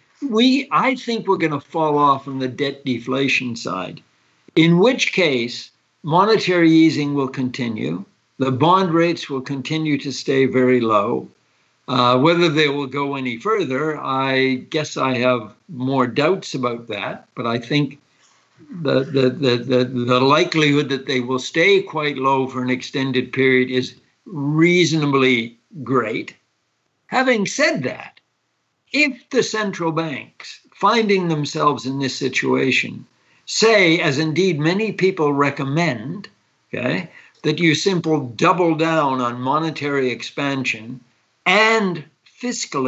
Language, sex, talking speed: English, male, 135 wpm